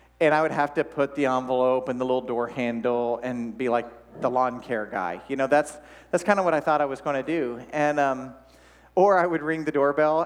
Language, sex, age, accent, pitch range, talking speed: English, male, 40-59, American, 110-140 Hz, 245 wpm